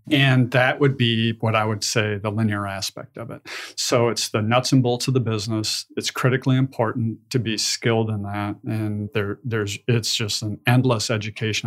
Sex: male